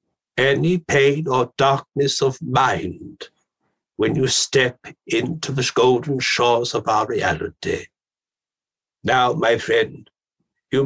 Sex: male